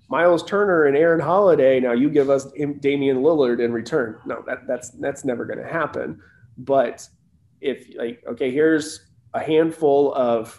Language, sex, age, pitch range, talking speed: English, male, 20-39, 120-150 Hz, 170 wpm